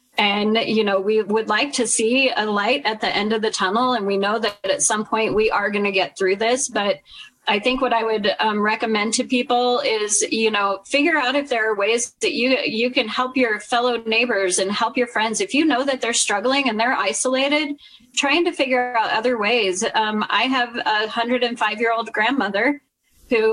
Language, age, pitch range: English, 30-49, 215-255 Hz